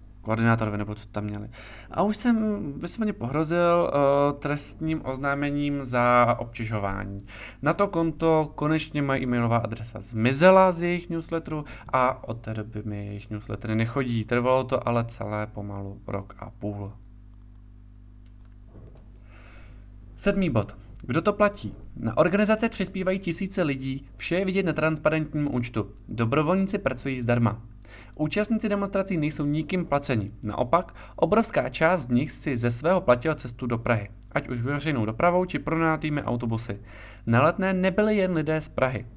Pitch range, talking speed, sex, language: 110-160 Hz, 140 wpm, male, Czech